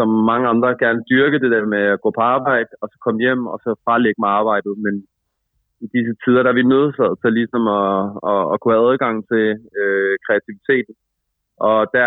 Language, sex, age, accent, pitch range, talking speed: Danish, male, 30-49, native, 105-120 Hz, 210 wpm